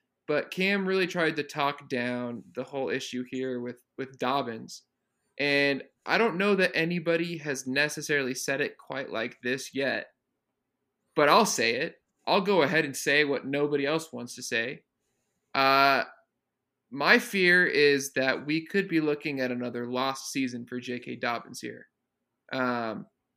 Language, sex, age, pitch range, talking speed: English, male, 20-39, 130-155 Hz, 155 wpm